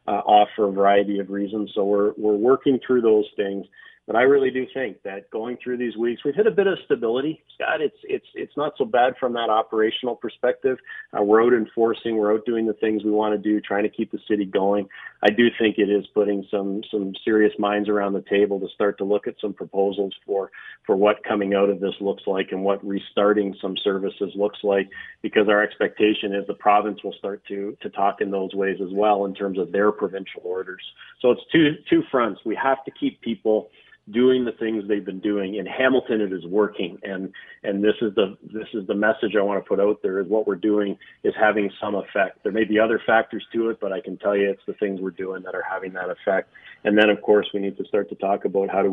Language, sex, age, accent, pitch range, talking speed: English, male, 40-59, American, 100-115 Hz, 240 wpm